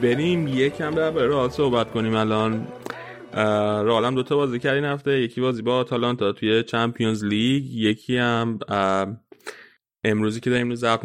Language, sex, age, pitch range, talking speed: Persian, male, 20-39, 110-130 Hz, 150 wpm